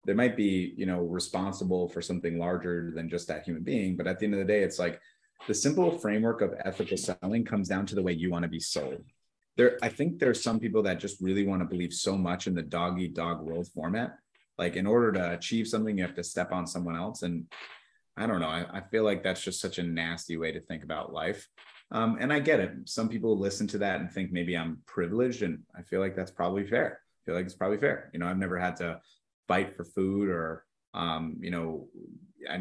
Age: 30-49